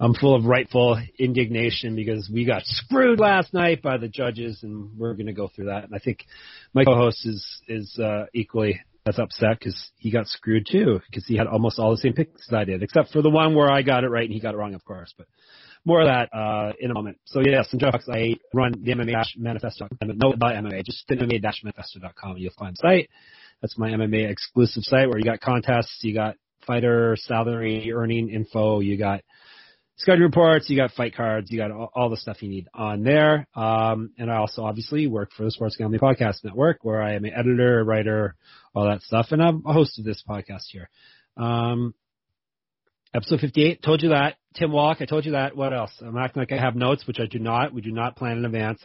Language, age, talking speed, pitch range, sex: English, 30-49, 225 wpm, 110-130 Hz, male